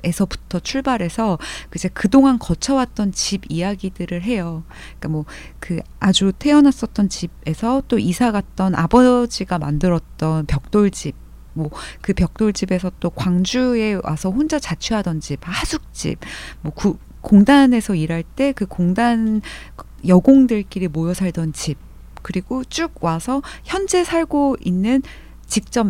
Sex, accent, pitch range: female, native, 180-250 Hz